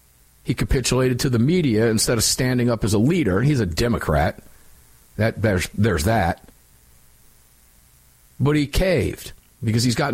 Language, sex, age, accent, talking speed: English, male, 50-69, American, 150 wpm